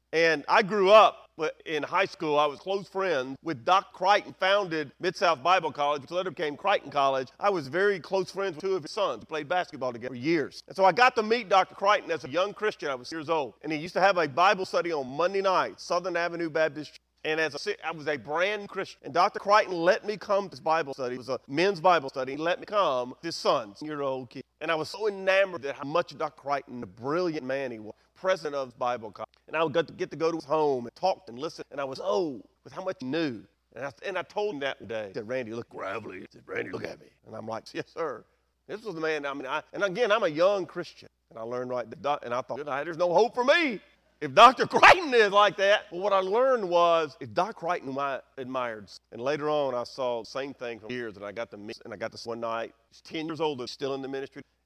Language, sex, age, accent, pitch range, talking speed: English, male, 40-59, American, 135-190 Hz, 270 wpm